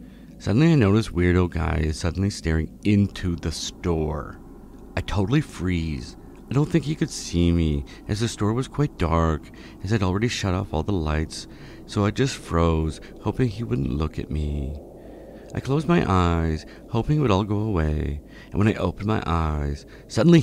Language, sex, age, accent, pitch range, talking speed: English, male, 50-69, American, 80-105 Hz, 185 wpm